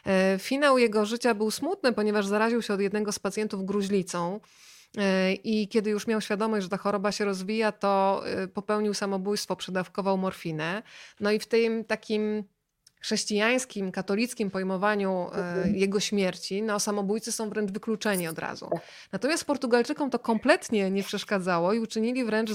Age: 20-39